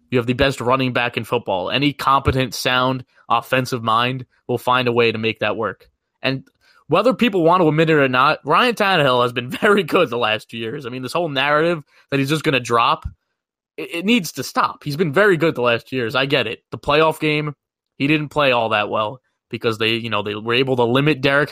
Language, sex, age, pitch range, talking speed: English, male, 20-39, 120-150 Hz, 240 wpm